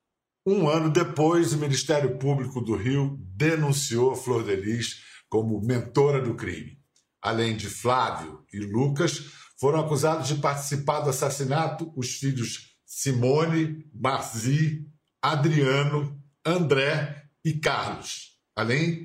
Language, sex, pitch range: Portuguese, male, 115-150 Hz